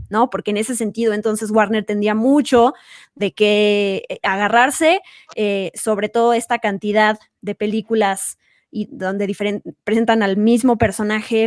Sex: female